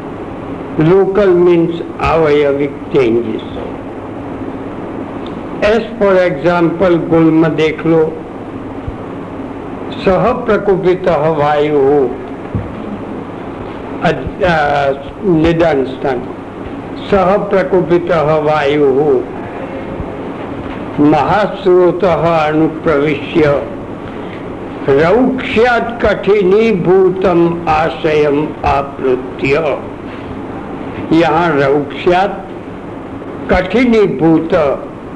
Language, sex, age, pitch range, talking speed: Hindi, male, 60-79, 150-190 Hz, 40 wpm